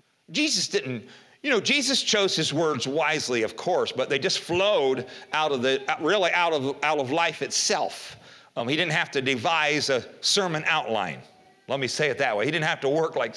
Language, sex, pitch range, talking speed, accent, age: English, male, 125-180 Hz, 205 wpm, American, 40-59